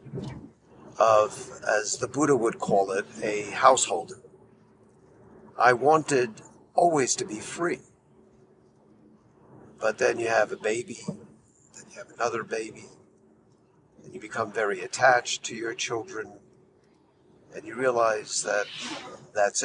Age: 50-69